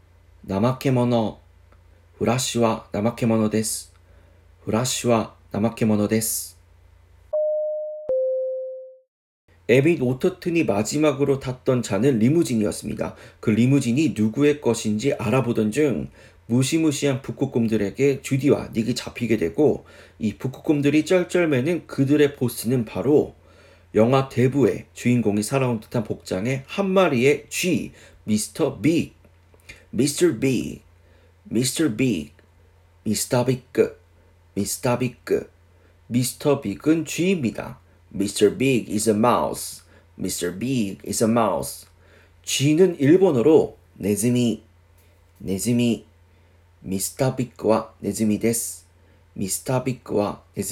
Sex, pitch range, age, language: male, 90-140 Hz, 40-59, Korean